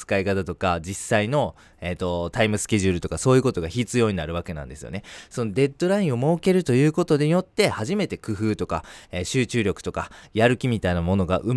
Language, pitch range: Japanese, 90-125 Hz